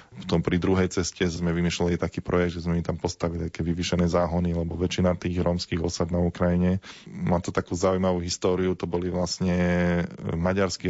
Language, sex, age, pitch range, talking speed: Slovak, male, 20-39, 85-90 Hz, 180 wpm